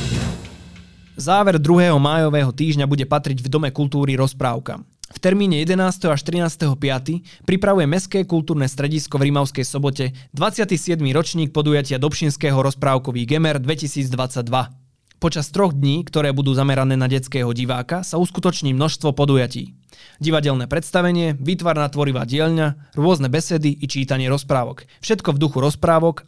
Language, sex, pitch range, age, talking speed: Slovak, male, 135-160 Hz, 20-39, 130 wpm